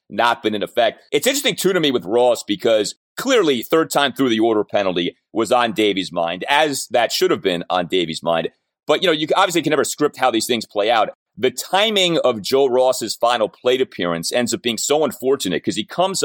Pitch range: 115-155 Hz